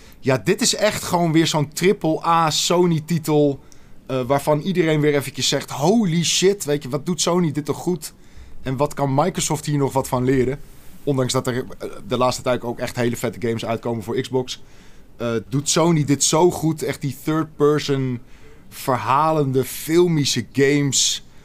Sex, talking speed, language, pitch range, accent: male, 170 wpm, Dutch, 125-155 Hz, Dutch